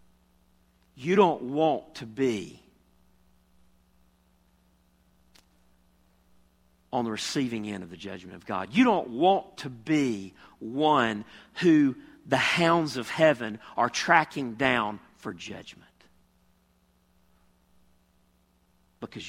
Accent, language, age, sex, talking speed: American, English, 50-69, male, 95 wpm